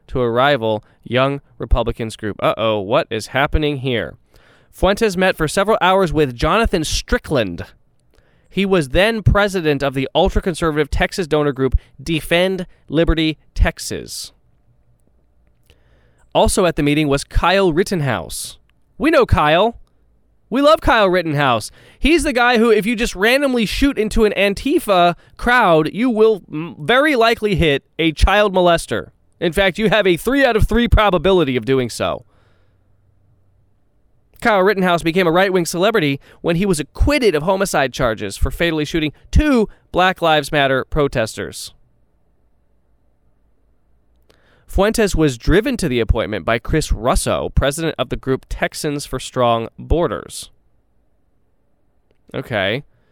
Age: 20-39